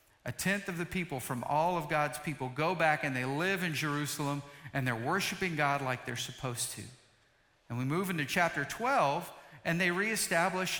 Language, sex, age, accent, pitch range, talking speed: English, male, 50-69, American, 140-185 Hz, 190 wpm